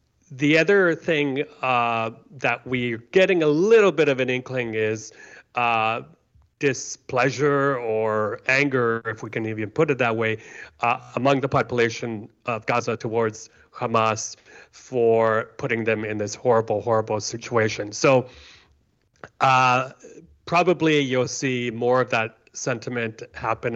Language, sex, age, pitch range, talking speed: English, male, 30-49, 110-130 Hz, 130 wpm